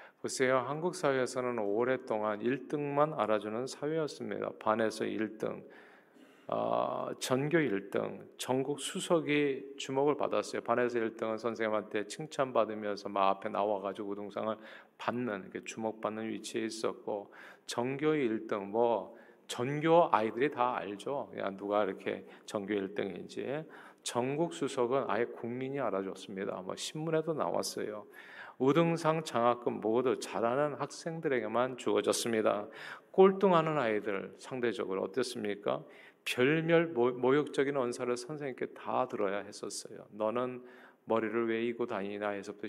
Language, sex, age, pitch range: Korean, male, 40-59, 105-145 Hz